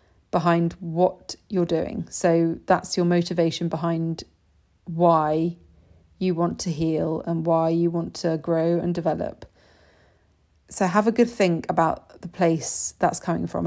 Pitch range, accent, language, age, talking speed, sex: 160-185 Hz, British, English, 30-49, 145 wpm, female